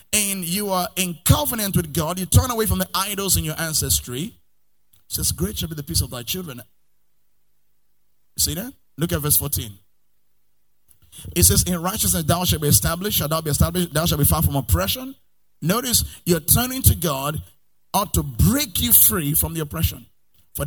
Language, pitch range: English, 130-180 Hz